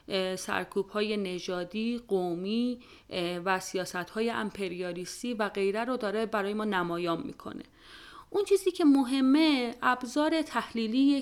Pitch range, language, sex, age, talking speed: 195-255 Hz, Persian, female, 30-49, 105 wpm